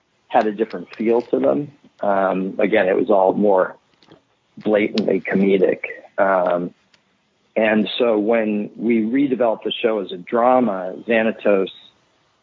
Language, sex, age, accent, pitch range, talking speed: English, male, 50-69, American, 100-120 Hz, 125 wpm